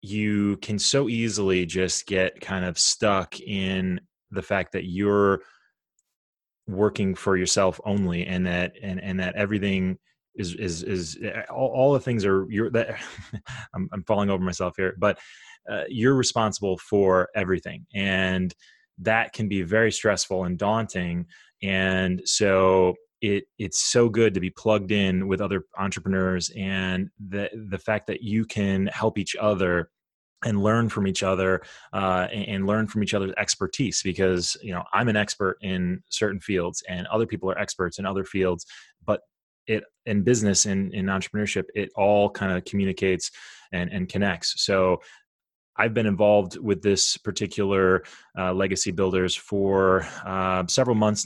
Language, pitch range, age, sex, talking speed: English, 95-105 Hz, 20-39, male, 160 wpm